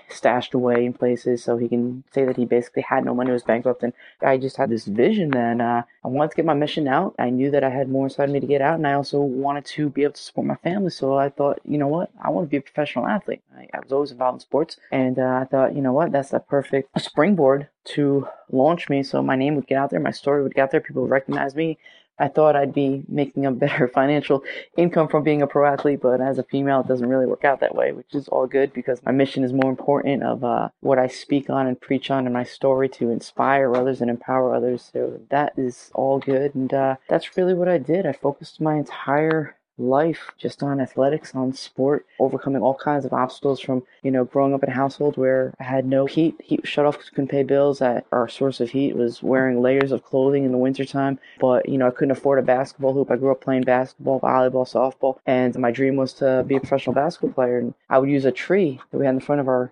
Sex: female